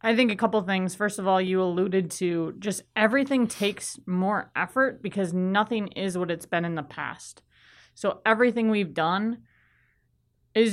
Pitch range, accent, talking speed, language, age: 160-205 Hz, American, 175 wpm, English, 30-49